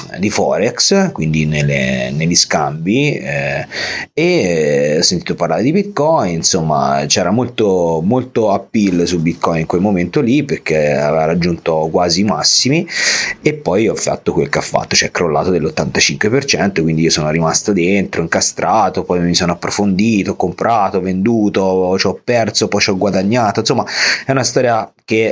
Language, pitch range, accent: Italian, 85-110 Hz, native